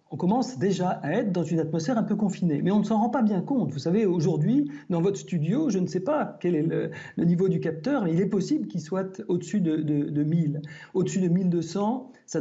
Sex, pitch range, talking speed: male, 160-215 Hz, 245 wpm